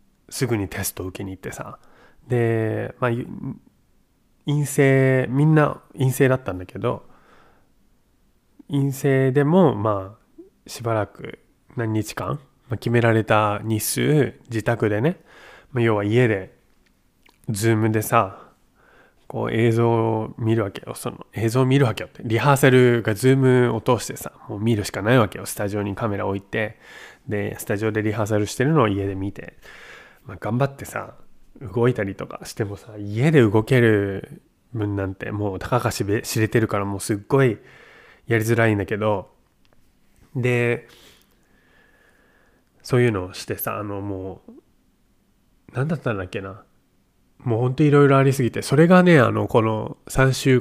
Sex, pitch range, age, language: male, 105-130 Hz, 20-39, Japanese